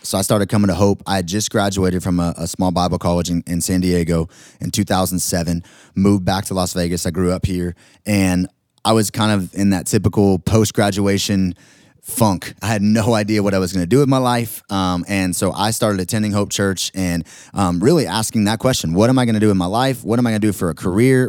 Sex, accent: male, American